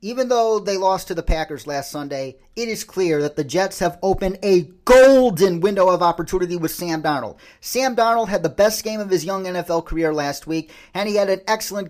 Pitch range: 175-215 Hz